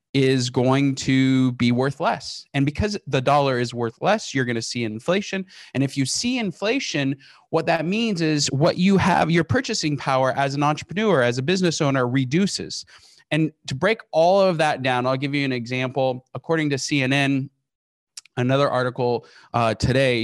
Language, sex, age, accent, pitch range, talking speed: English, male, 20-39, American, 125-155 Hz, 180 wpm